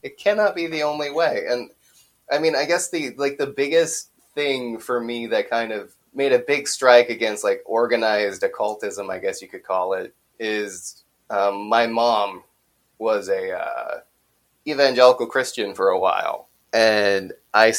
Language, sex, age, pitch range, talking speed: English, male, 20-39, 105-145 Hz, 165 wpm